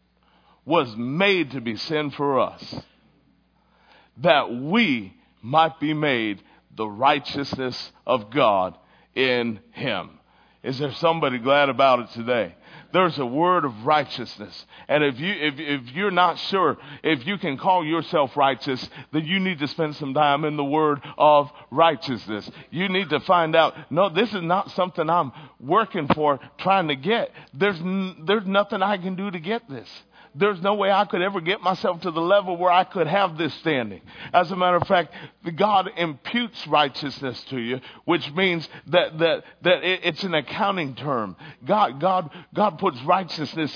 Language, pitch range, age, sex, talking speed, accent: English, 145-185 Hz, 50-69, male, 170 wpm, American